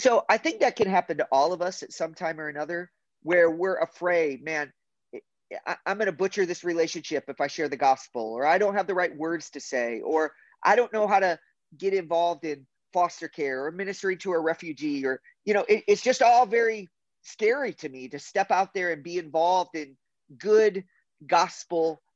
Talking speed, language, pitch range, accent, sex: 205 wpm, English, 145-195 Hz, American, male